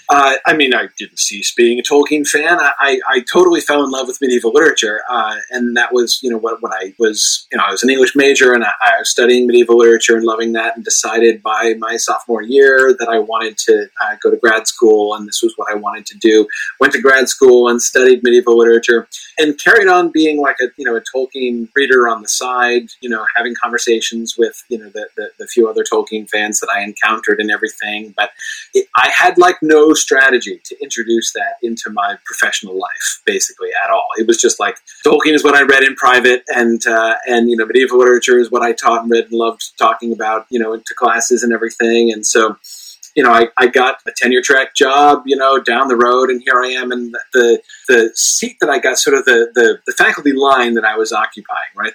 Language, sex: English, male